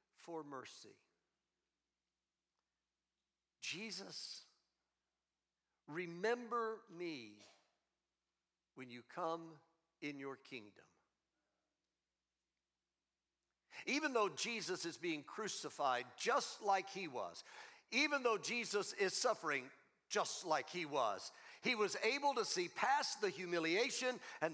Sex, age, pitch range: male, 60-79, 185-255 Hz